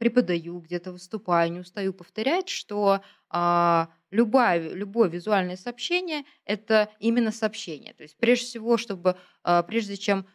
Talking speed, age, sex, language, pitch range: 135 wpm, 20-39, female, Russian, 170-220 Hz